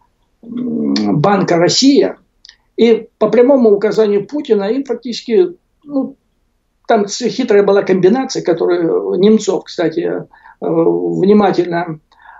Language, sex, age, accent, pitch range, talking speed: Russian, male, 60-79, native, 195-270 Hz, 80 wpm